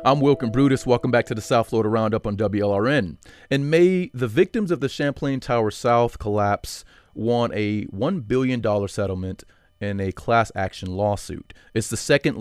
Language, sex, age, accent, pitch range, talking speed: English, male, 30-49, American, 100-130 Hz, 175 wpm